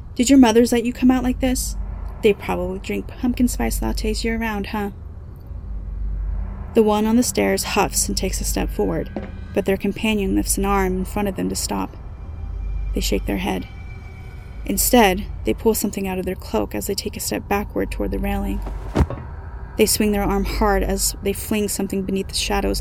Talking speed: 195 wpm